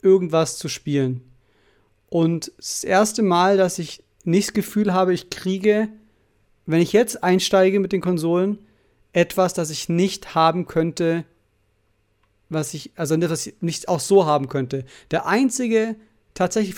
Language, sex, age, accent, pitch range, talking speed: German, male, 40-59, German, 160-190 Hz, 145 wpm